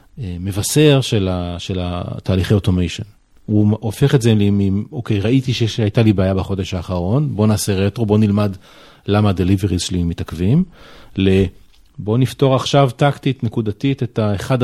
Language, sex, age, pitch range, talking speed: Hebrew, male, 40-59, 95-120 Hz, 140 wpm